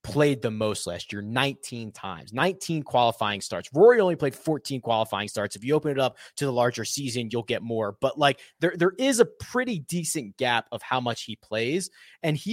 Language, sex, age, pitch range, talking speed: English, male, 20-39, 115-155 Hz, 210 wpm